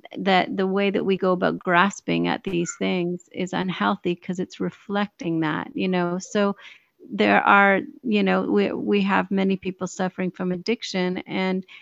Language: English